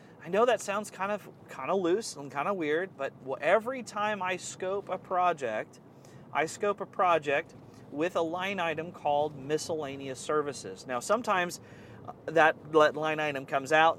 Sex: male